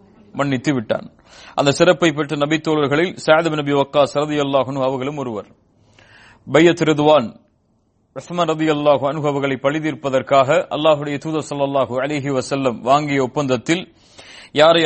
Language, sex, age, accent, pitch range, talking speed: English, male, 30-49, Indian, 135-155 Hz, 95 wpm